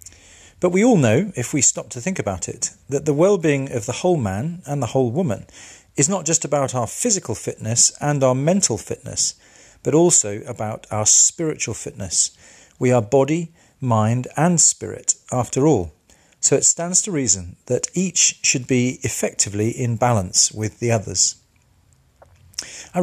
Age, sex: 40-59, male